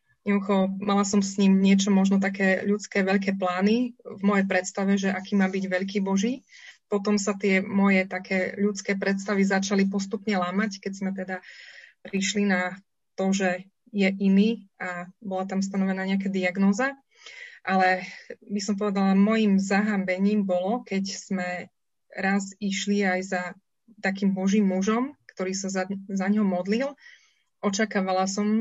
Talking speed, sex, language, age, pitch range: 140 wpm, female, Slovak, 20-39, 190-205 Hz